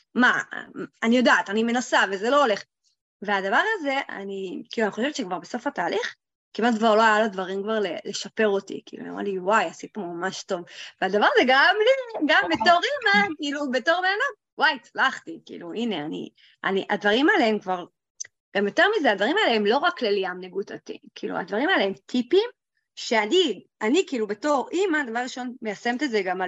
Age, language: 30-49, Hebrew